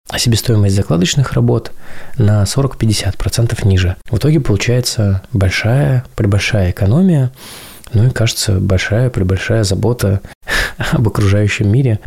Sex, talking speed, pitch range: male, 105 wpm, 95-115 Hz